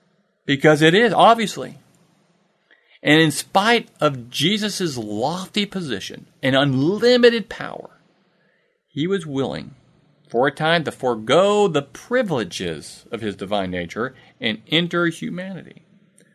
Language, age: English, 40-59